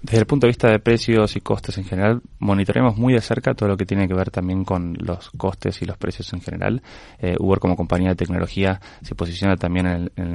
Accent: Argentinian